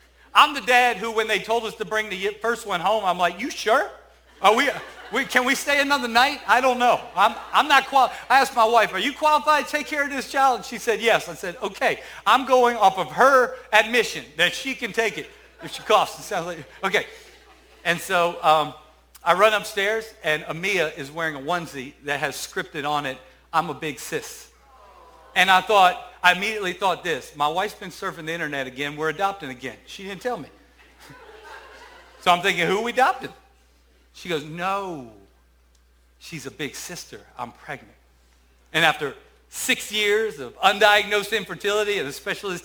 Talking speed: 195 wpm